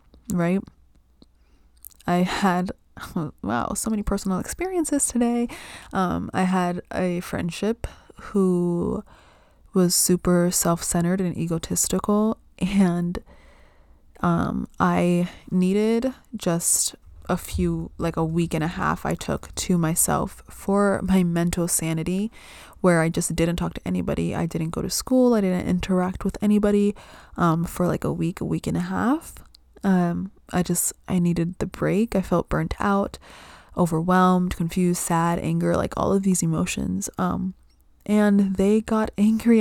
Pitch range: 170-195 Hz